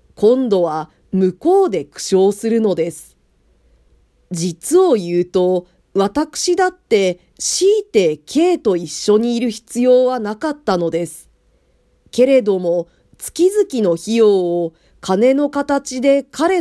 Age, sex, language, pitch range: 40-59, female, Japanese, 175-280 Hz